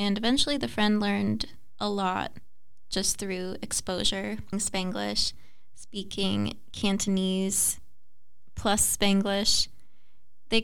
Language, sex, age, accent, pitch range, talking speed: English, female, 20-39, American, 180-210 Hz, 90 wpm